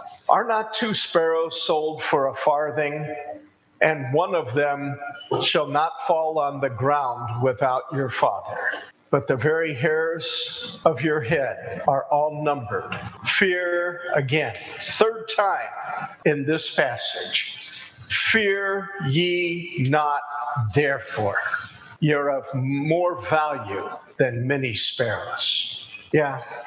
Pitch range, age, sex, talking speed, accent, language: 145-175 Hz, 50-69, male, 110 wpm, American, English